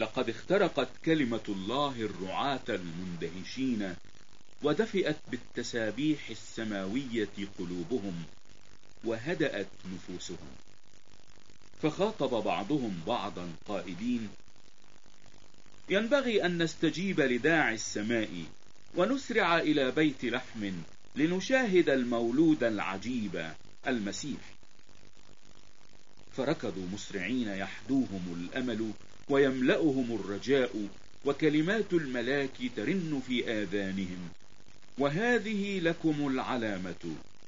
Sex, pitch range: male, 100-155 Hz